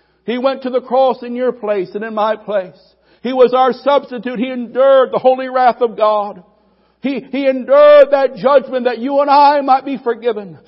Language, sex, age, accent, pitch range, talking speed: English, male, 60-79, American, 235-295 Hz, 195 wpm